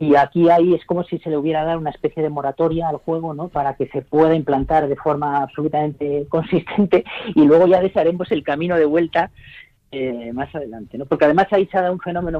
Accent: Spanish